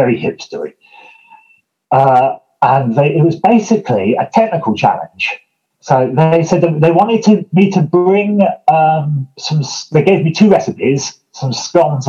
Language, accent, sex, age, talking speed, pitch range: English, British, male, 30-49, 150 wpm, 130-190 Hz